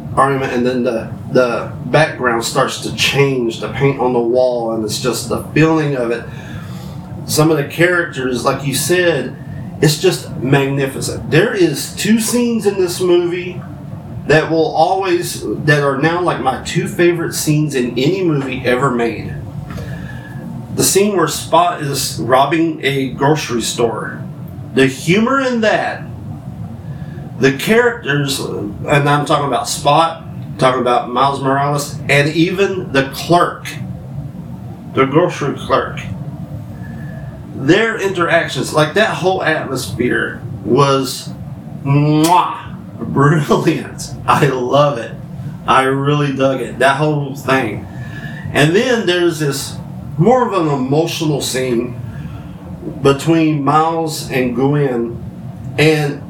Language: English